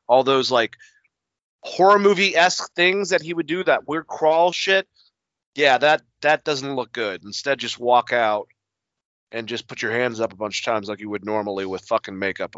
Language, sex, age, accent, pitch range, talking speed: English, male, 30-49, American, 130-200 Hz, 195 wpm